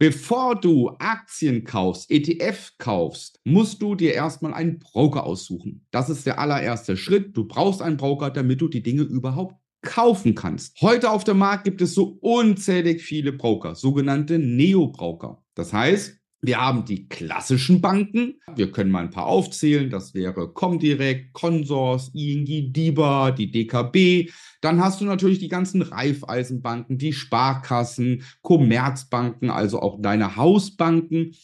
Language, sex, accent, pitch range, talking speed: German, male, German, 130-180 Hz, 145 wpm